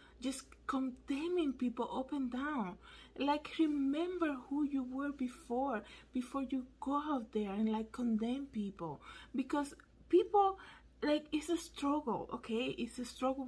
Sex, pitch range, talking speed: female, 220-275 Hz, 140 wpm